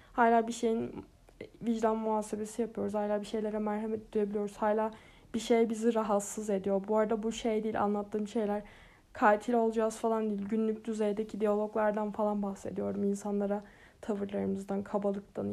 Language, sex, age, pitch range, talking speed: Turkish, female, 10-29, 215-240 Hz, 140 wpm